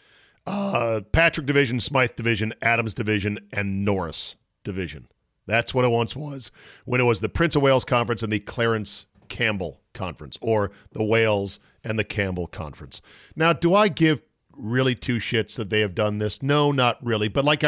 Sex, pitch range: male, 110-145 Hz